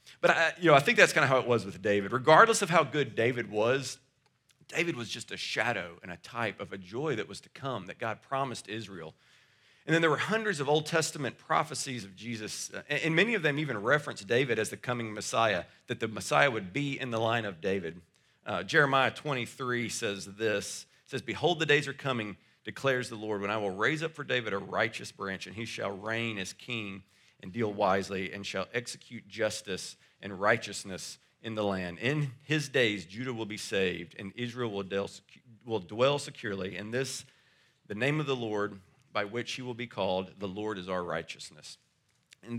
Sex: male